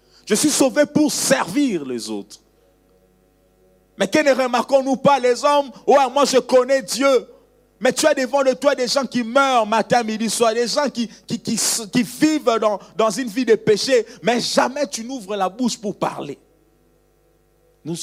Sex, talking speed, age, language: male, 185 wpm, 50-69, French